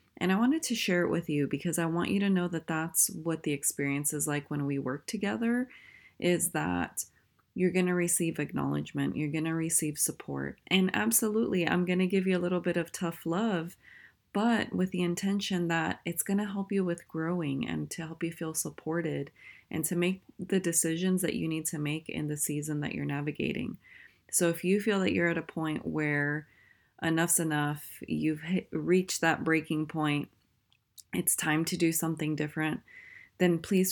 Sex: female